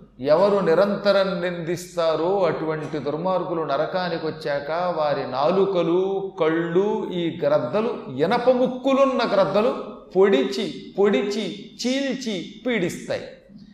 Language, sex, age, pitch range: Telugu, male, 40-59, 140-205 Hz